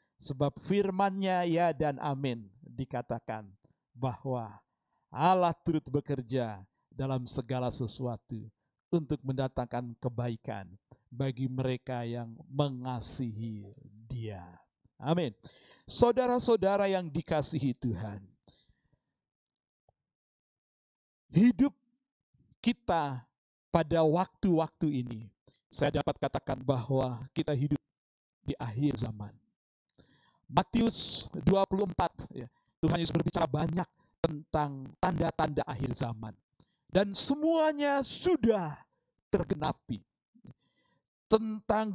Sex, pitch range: male, 130-210 Hz